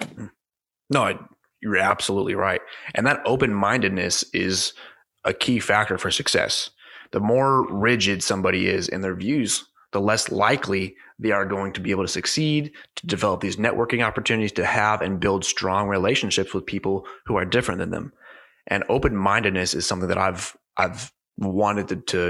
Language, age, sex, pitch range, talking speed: English, 20-39, male, 95-110 Hz, 165 wpm